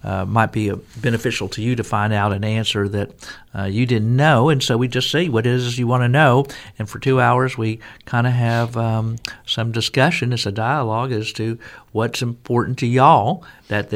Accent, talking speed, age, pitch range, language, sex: American, 220 wpm, 50-69, 105-120 Hz, English, male